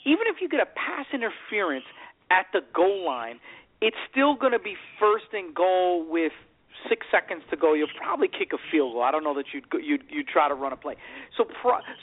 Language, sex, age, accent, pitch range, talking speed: English, male, 40-59, American, 225-300 Hz, 225 wpm